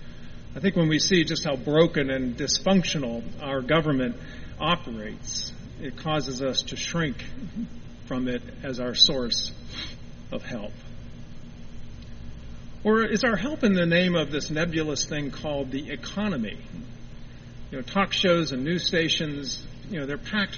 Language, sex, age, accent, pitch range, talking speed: English, male, 50-69, American, 135-175 Hz, 145 wpm